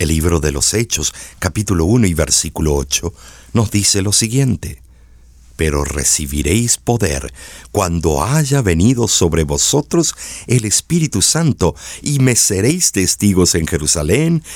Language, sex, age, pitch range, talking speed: Spanish, male, 50-69, 80-120 Hz, 130 wpm